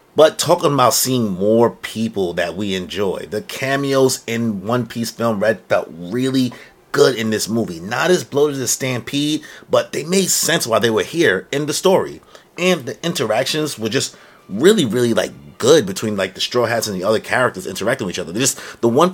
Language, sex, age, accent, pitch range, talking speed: English, male, 30-49, American, 110-145 Hz, 200 wpm